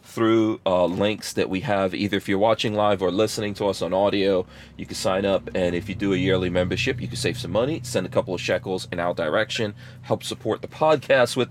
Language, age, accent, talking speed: English, 30-49, American, 240 wpm